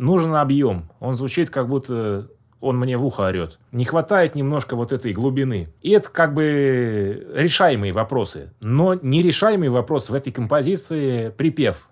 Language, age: Russian, 20-39